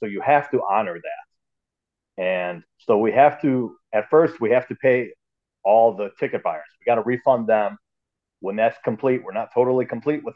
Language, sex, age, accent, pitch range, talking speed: English, male, 40-59, American, 110-150 Hz, 195 wpm